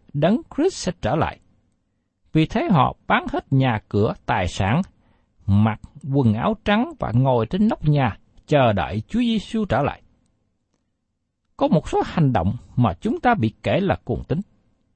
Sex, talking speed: male, 170 wpm